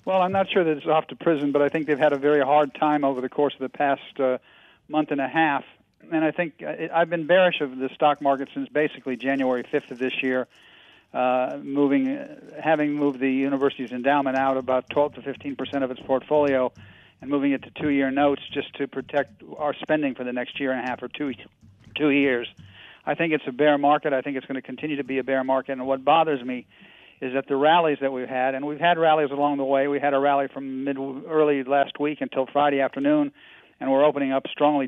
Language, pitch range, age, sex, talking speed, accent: English, 130-150 Hz, 50-69, male, 240 wpm, American